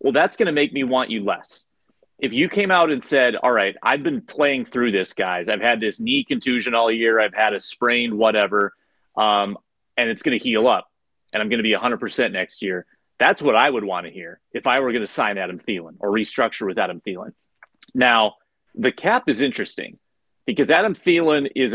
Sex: male